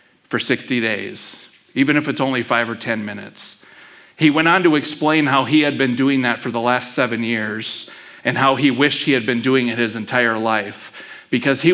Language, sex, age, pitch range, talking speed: English, male, 40-59, 120-145 Hz, 210 wpm